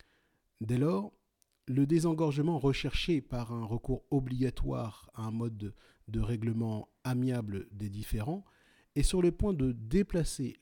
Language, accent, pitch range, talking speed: French, French, 110-150 Hz, 130 wpm